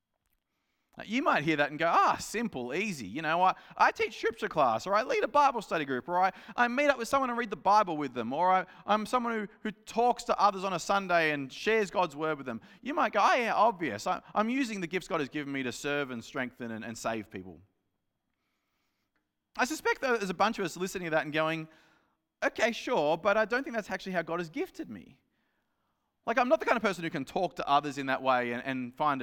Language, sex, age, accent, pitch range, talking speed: English, male, 30-49, Australian, 145-235 Hz, 250 wpm